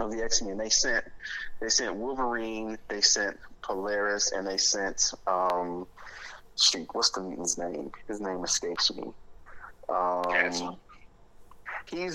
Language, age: English, 30-49